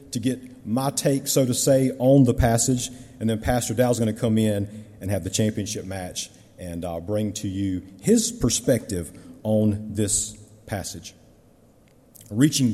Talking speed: 160 wpm